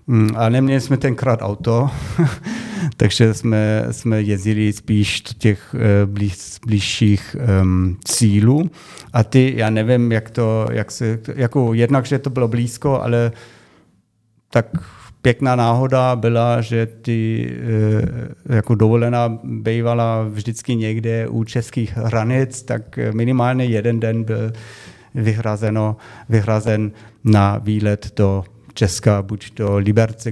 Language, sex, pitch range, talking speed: Czech, male, 105-120 Hz, 115 wpm